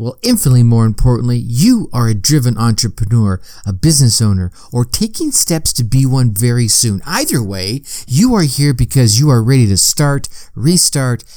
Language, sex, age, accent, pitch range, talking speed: English, male, 50-69, American, 115-155 Hz, 170 wpm